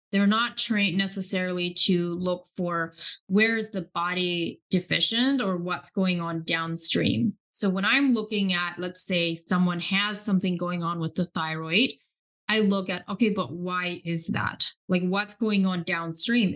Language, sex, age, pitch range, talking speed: English, female, 20-39, 175-210 Hz, 160 wpm